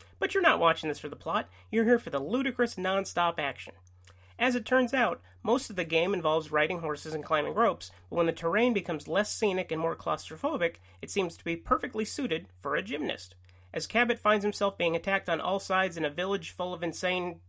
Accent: American